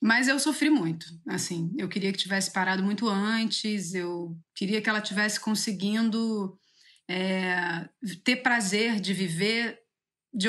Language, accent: Portuguese, Brazilian